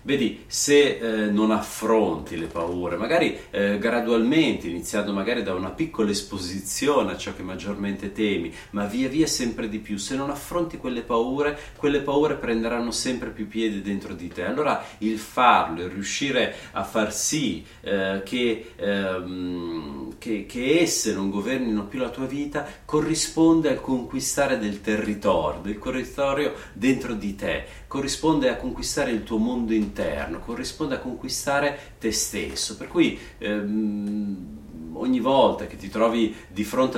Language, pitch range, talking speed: Italian, 105-145 Hz, 155 wpm